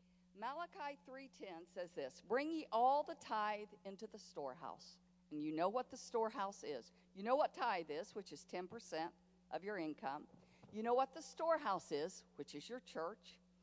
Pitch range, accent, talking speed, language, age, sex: 180-270 Hz, American, 175 wpm, English, 50-69, female